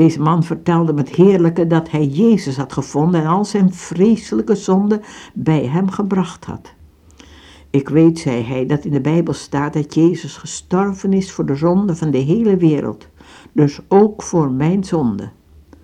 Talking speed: 165 wpm